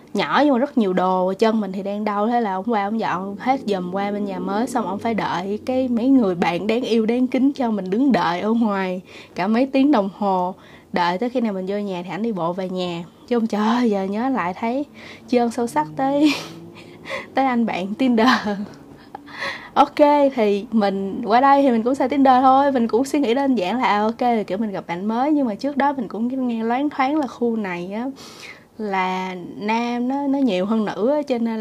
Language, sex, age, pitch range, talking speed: Vietnamese, female, 20-39, 190-260 Hz, 230 wpm